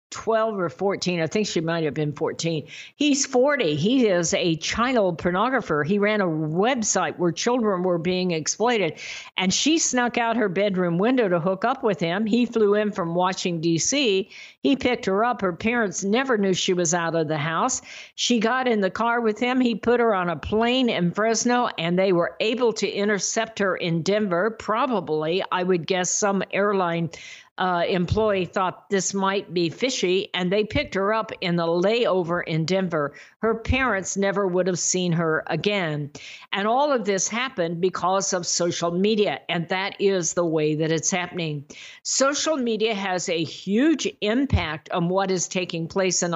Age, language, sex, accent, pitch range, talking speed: 50-69, English, female, American, 175-220 Hz, 185 wpm